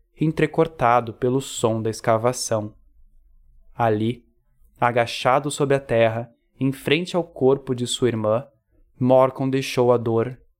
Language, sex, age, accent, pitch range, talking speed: Portuguese, male, 20-39, Brazilian, 115-135 Hz, 120 wpm